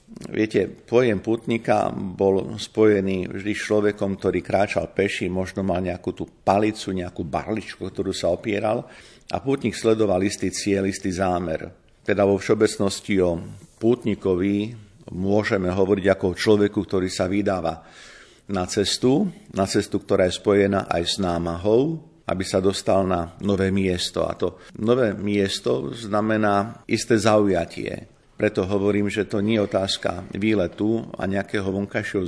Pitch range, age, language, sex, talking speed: 95-105 Hz, 50-69, Slovak, male, 140 wpm